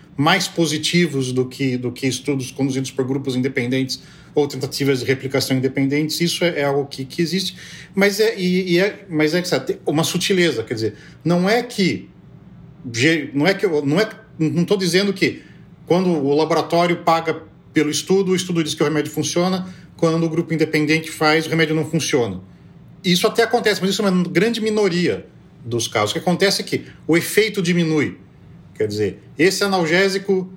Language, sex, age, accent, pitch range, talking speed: Portuguese, male, 40-59, Brazilian, 145-185 Hz, 180 wpm